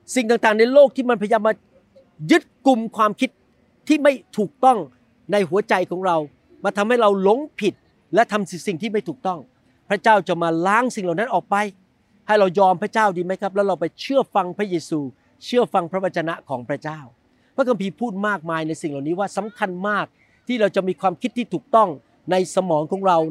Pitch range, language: 170-225 Hz, Thai